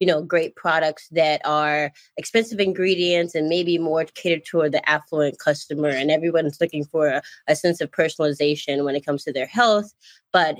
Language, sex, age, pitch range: English, female, 20-39, 145-170 Hz